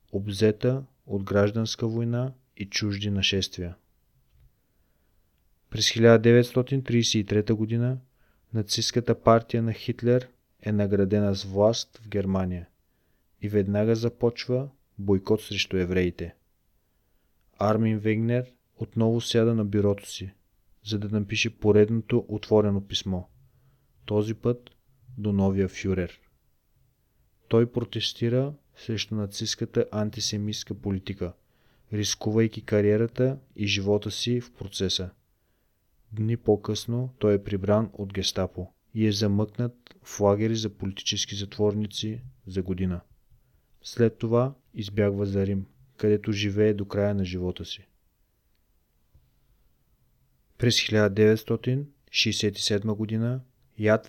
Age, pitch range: 30-49, 100-115 Hz